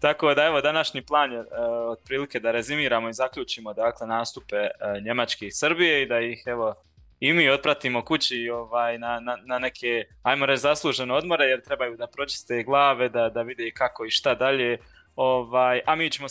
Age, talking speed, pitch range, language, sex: 20-39, 190 wpm, 115-140 Hz, Croatian, male